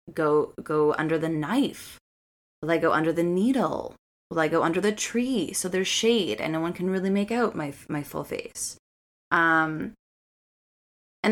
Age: 20-39